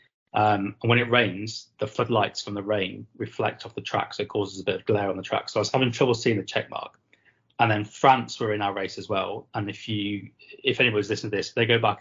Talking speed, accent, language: 265 wpm, British, English